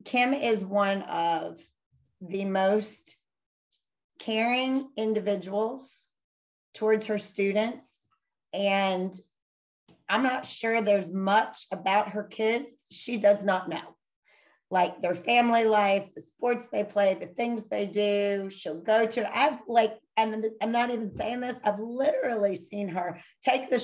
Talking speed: 140 wpm